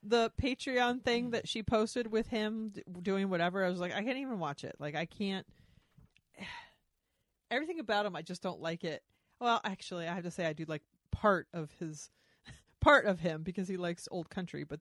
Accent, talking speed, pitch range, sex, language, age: American, 205 wpm, 165-220 Hz, female, English, 30-49